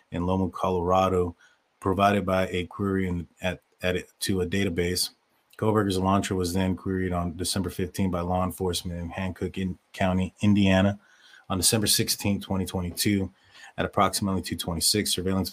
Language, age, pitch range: English, 30-49, 90-100 Hz